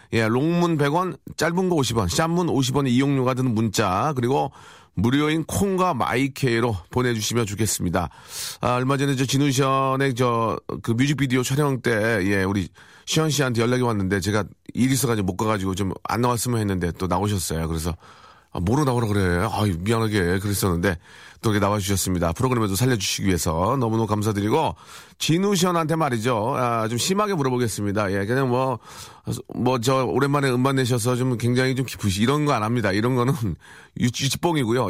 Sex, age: male, 40-59